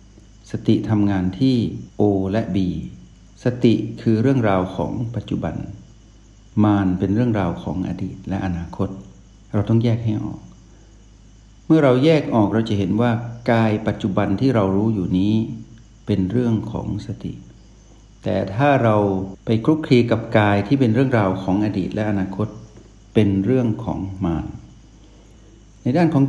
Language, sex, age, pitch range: Thai, male, 60-79, 100-120 Hz